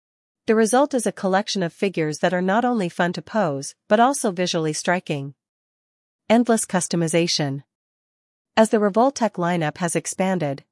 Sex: female